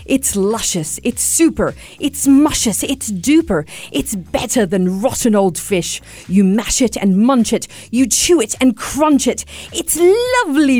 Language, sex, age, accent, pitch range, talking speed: English, female, 40-59, British, 185-290 Hz, 155 wpm